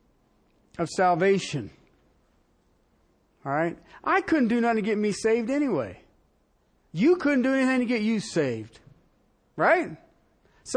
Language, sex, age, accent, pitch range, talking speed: English, male, 50-69, American, 215-325 Hz, 130 wpm